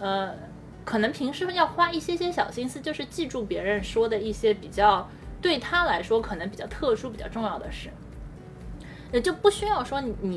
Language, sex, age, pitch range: Chinese, female, 20-39, 200-280 Hz